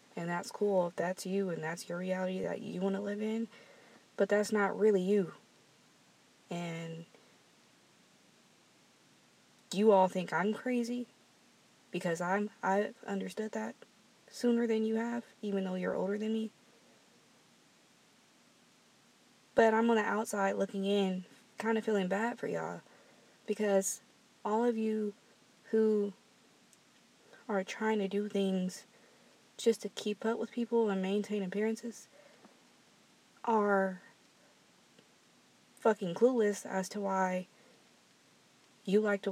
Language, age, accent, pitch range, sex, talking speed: English, 20-39, American, 185-220 Hz, female, 125 wpm